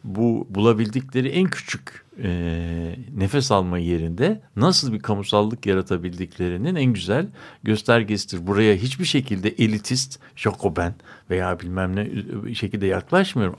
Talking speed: 110 wpm